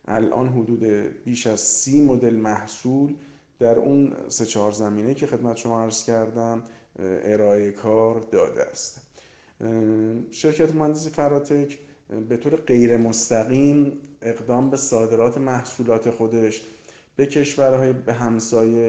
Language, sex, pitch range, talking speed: Persian, male, 110-125 Hz, 110 wpm